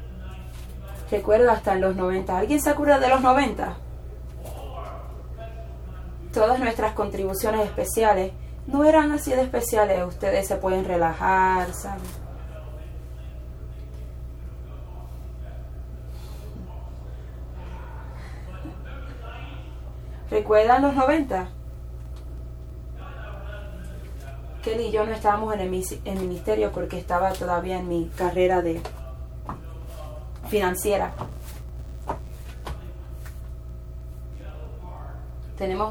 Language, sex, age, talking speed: English, female, 20-39, 75 wpm